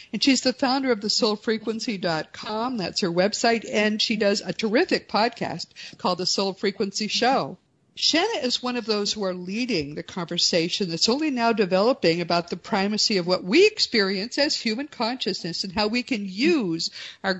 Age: 50-69